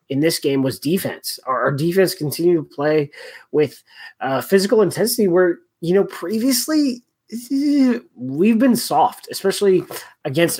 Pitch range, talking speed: 145-195 Hz, 130 wpm